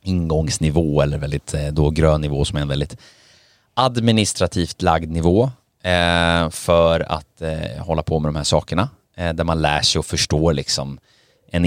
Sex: male